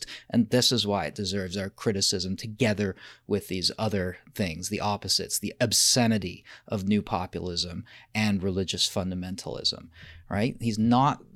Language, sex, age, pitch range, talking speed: English, male, 30-49, 100-140 Hz, 135 wpm